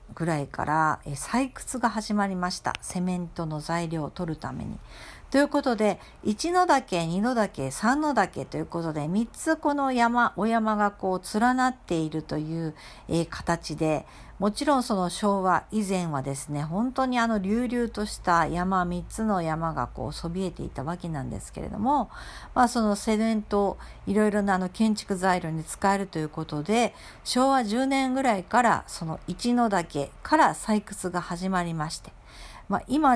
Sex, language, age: female, Japanese, 50-69